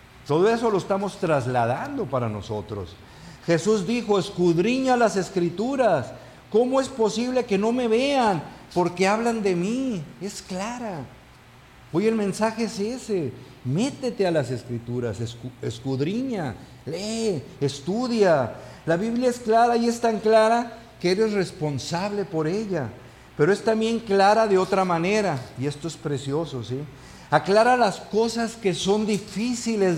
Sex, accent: male, Mexican